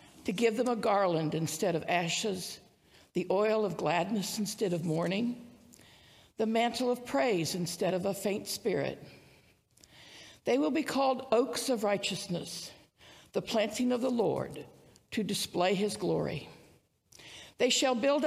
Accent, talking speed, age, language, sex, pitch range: American, 140 wpm, 60-79, English, female, 195-240 Hz